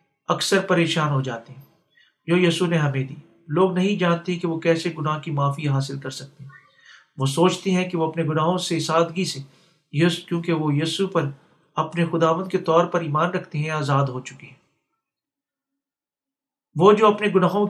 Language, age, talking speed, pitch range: Urdu, 50-69, 185 wpm, 150-180 Hz